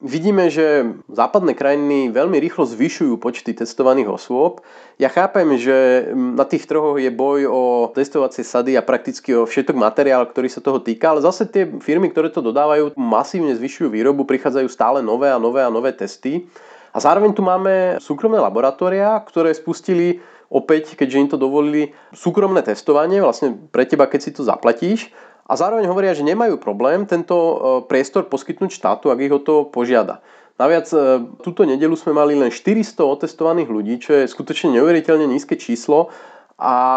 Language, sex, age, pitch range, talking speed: Slovak, male, 30-49, 130-175 Hz, 160 wpm